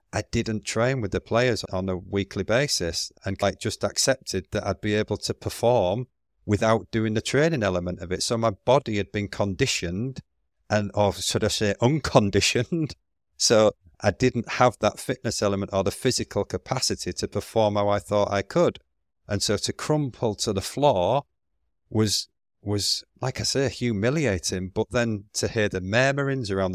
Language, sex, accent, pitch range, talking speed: English, male, British, 95-110 Hz, 175 wpm